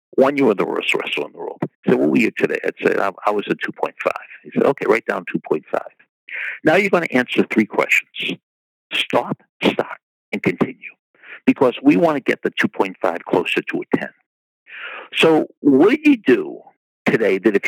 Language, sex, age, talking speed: English, male, 60-79, 195 wpm